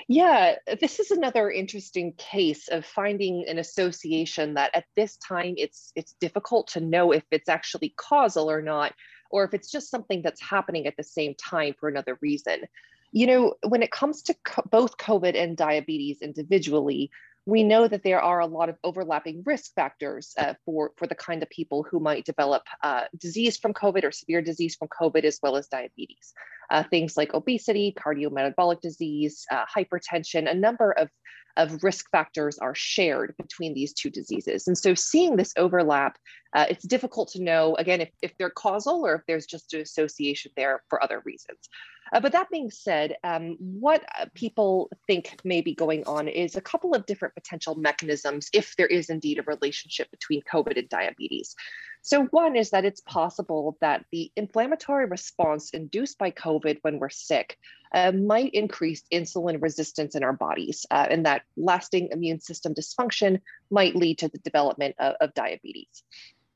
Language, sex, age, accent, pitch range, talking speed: English, female, 30-49, American, 155-210 Hz, 180 wpm